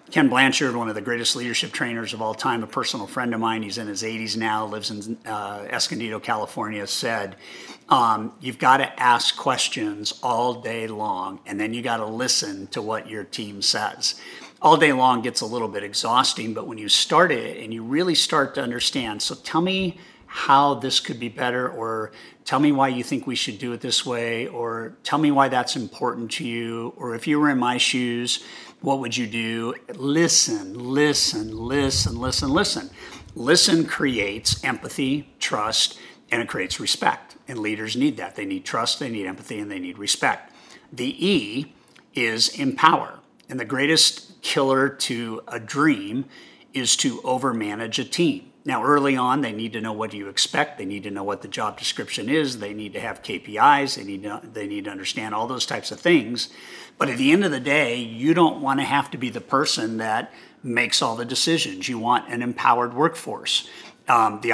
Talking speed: 195 wpm